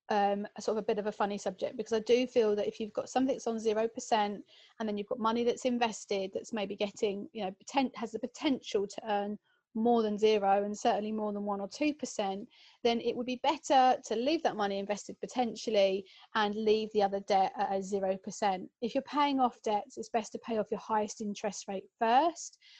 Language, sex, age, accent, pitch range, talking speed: English, female, 30-49, British, 205-240 Hz, 220 wpm